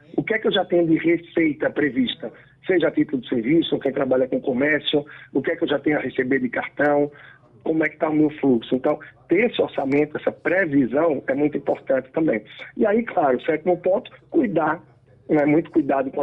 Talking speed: 220 wpm